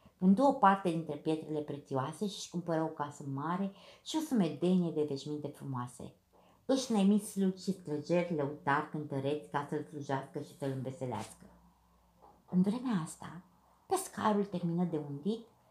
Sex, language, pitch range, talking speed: female, Romanian, 145-195 Hz, 140 wpm